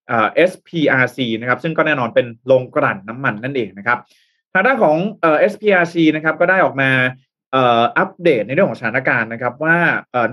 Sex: male